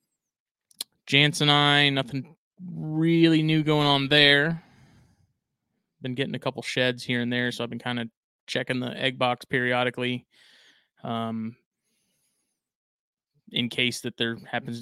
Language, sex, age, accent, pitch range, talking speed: English, male, 20-39, American, 115-135 Hz, 135 wpm